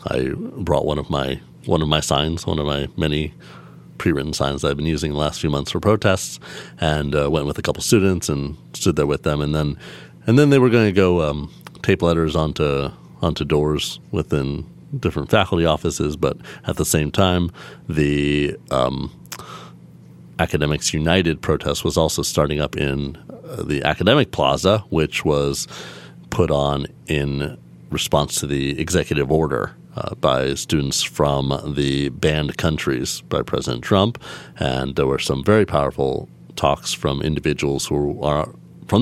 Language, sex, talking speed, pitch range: English, male, 165 wpm, 70-90 Hz